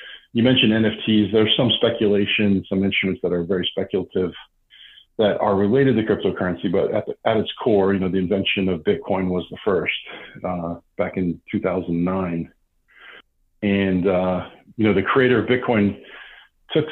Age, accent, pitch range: 40-59, American, 95-110 Hz